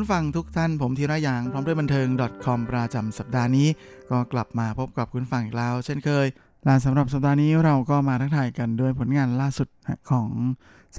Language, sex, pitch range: Thai, male, 115-135 Hz